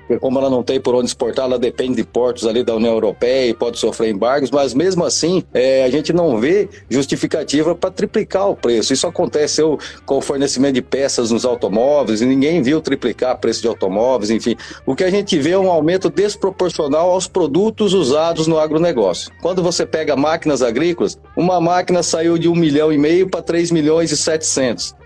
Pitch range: 135-190 Hz